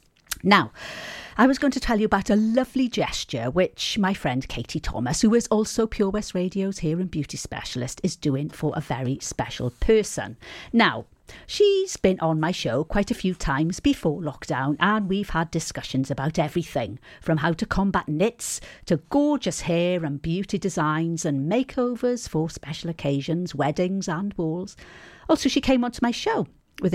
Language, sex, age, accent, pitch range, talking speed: English, female, 40-59, British, 150-195 Hz, 170 wpm